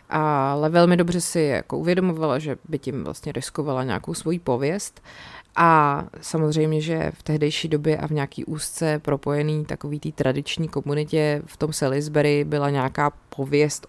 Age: 20-39